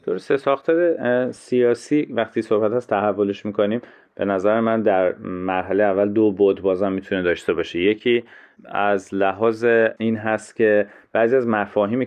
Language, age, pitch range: Persian, 30-49, 90-105 Hz